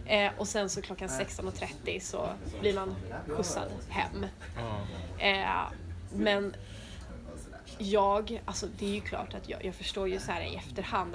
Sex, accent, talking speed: female, Swedish, 150 wpm